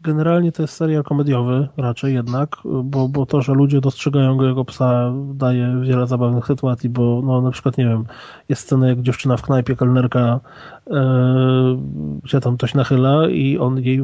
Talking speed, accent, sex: 175 wpm, native, male